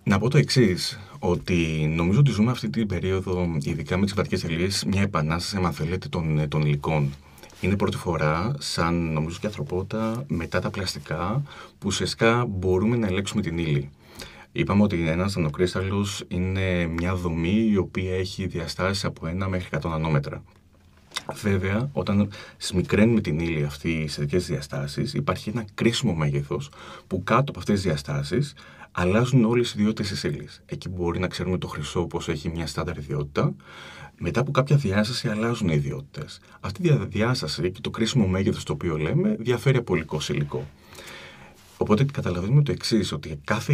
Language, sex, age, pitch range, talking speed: Greek, male, 30-49, 80-110 Hz, 165 wpm